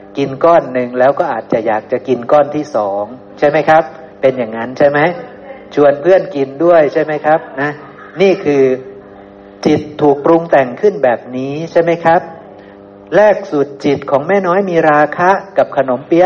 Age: 60-79